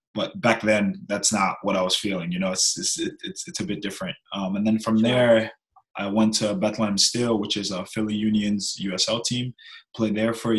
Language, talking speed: English, 220 wpm